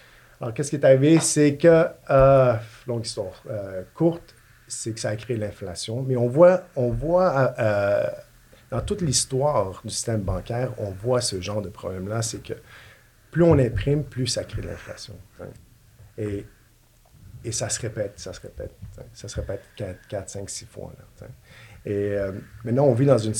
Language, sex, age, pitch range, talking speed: French, male, 50-69, 100-125 Hz, 180 wpm